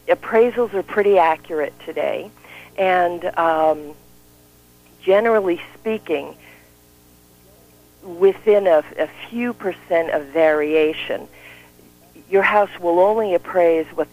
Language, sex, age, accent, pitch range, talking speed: English, female, 50-69, American, 150-195 Hz, 95 wpm